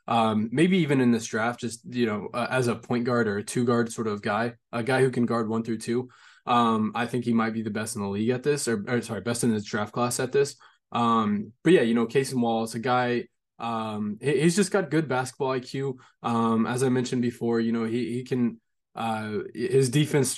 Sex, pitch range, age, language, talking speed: male, 115-130 Hz, 20-39, English, 240 wpm